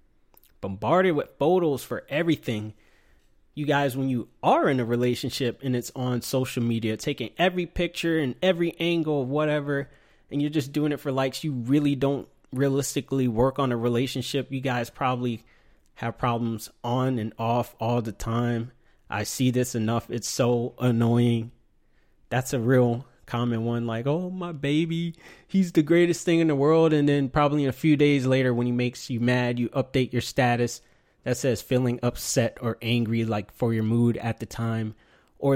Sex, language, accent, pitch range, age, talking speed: male, English, American, 115-140 Hz, 20-39, 175 wpm